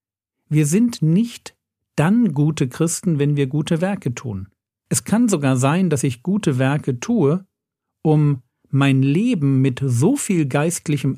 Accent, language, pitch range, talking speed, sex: German, German, 125-175 Hz, 145 wpm, male